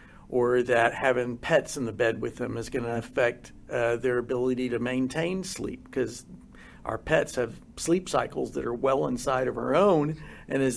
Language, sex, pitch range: English, male, 120-135 Hz